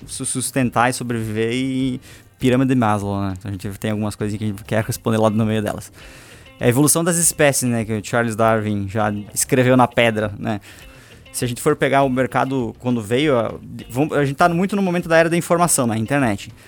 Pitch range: 110-145 Hz